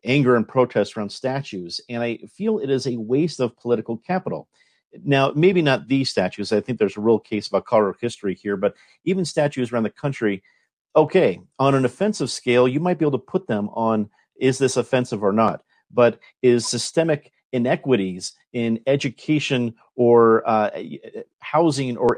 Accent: American